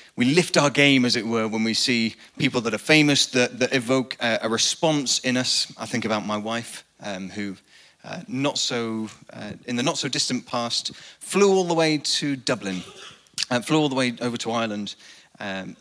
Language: English